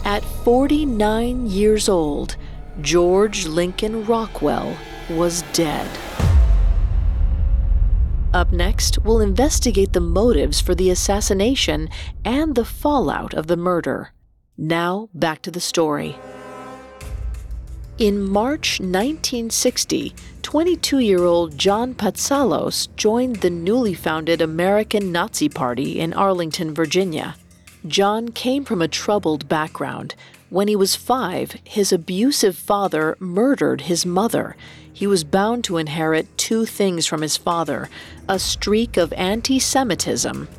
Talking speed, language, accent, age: 110 wpm, English, American, 40-59